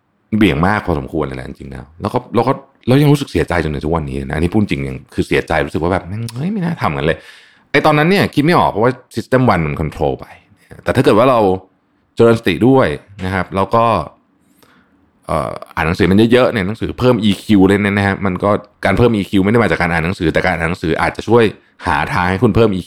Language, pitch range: Thai, 80-115 Hz